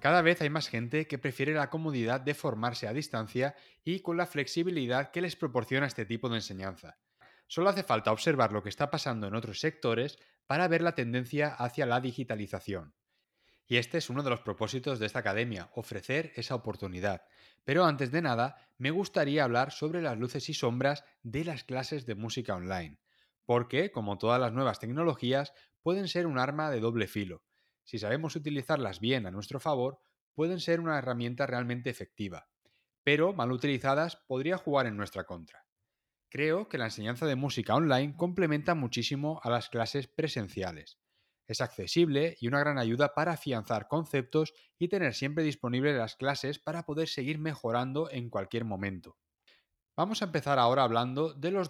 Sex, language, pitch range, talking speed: male, Spanish, 115-155 Hz, 175 wpm